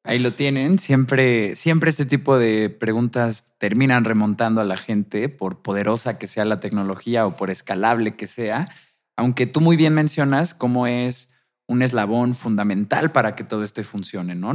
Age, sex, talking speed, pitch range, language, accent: 20-39, male, 170 wpm, 105-130 Hz, Spanish, Mexican